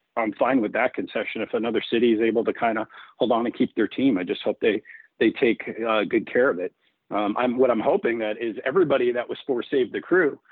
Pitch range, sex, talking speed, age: 115-135 Hz, male, 250 wpm, 50-69